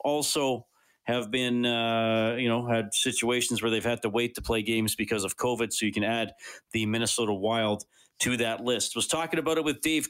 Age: 40-59